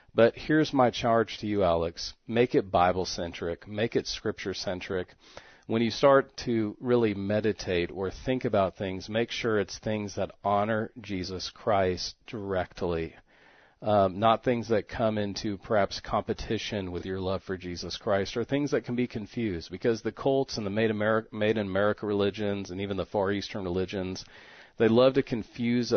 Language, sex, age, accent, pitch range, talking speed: English, male, 40-59, American, 95-115 Hz, 165 wpm